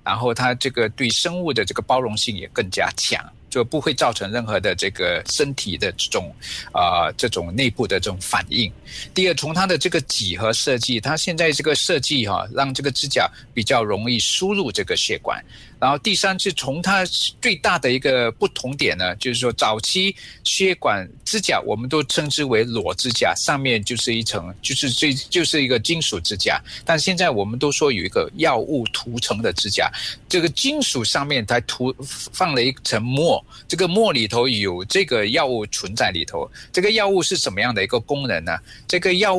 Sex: male